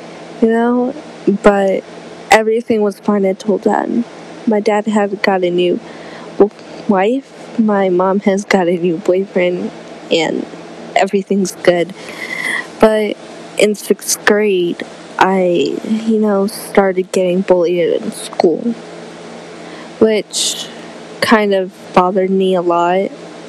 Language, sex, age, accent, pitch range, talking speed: English, female, 10-29, American, 185-220 Hz, 110 wpm